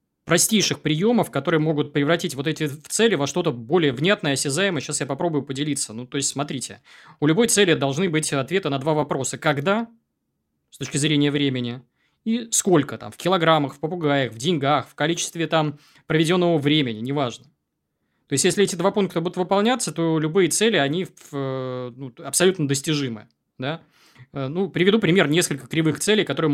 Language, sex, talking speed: Russian, male, 165 wpm